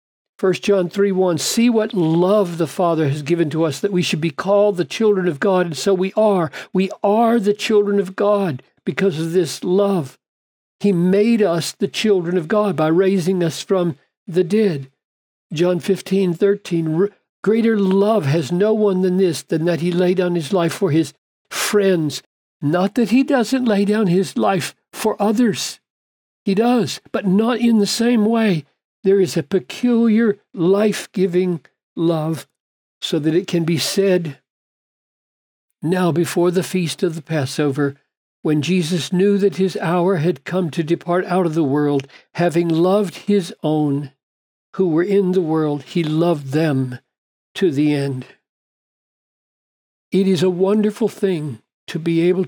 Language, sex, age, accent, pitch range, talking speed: English, male, 60-79, American, 160-200 Hz, 160 wpm